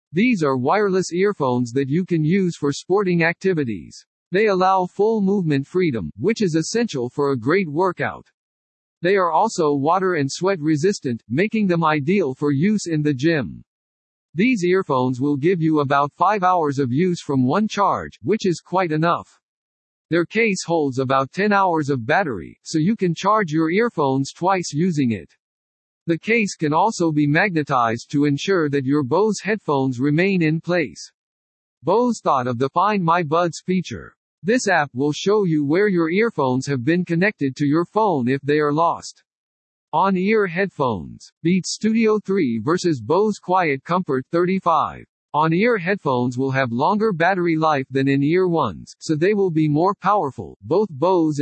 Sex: male